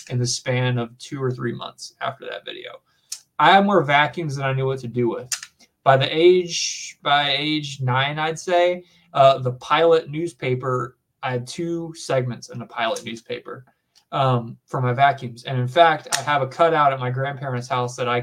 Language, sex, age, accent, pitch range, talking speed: English, male, 20-39, American, 125-155 Hz, 195 wpm